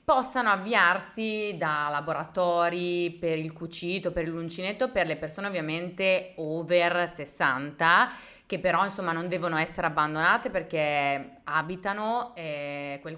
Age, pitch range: 30-49, 160-190 Hz